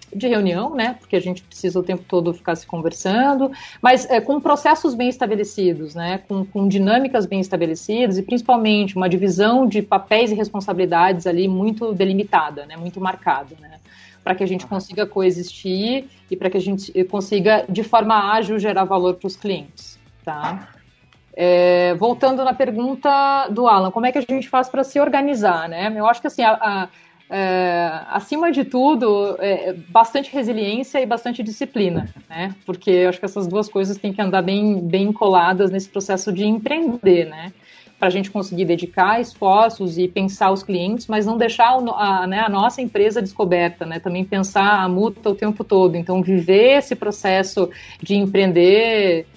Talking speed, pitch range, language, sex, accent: 175 wpm, 185-230 Hz, Portuguese, female, Brazilian